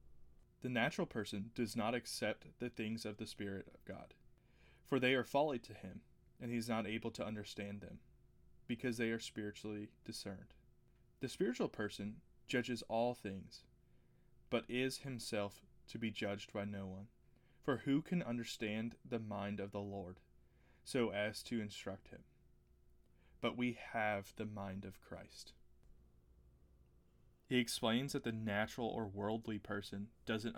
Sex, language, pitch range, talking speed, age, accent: male, English, 100-115 Hz, 150 wpm, 20-39, American